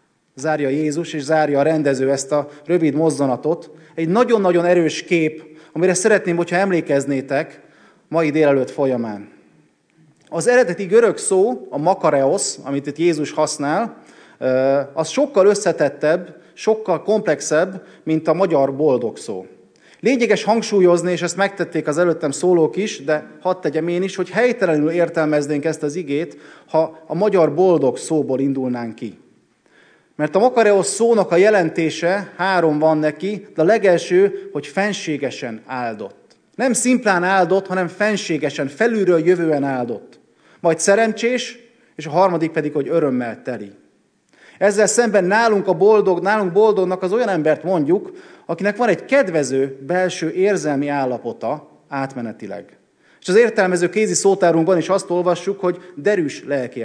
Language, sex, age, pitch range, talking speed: Hungarian, male, 30-49, 150-195 Hz, 135 wpm